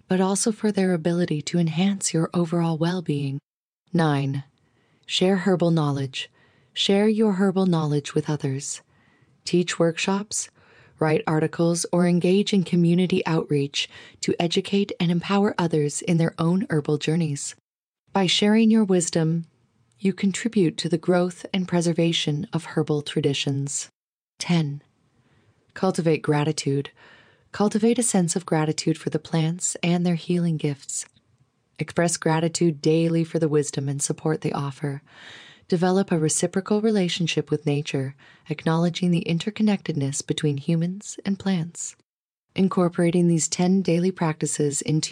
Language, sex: English, female